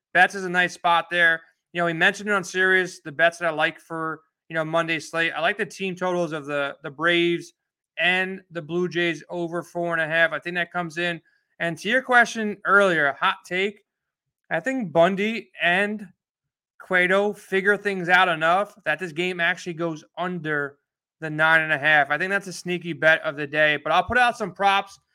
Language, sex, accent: English, male, American